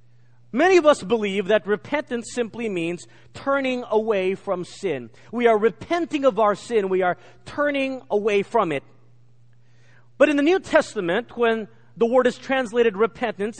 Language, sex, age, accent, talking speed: English, male, 40-59, American, 155 wpm